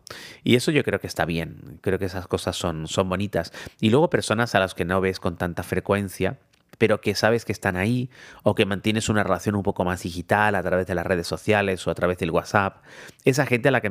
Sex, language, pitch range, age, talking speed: male, Spanish, 90-110 Hz, 30-49, 240 wpm